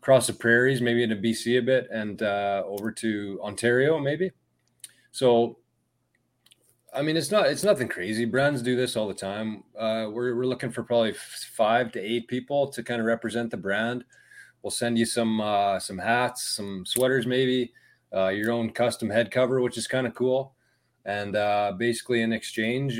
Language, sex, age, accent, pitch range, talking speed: English, male, 30-49, American, 105-125 Hz, 180 wpm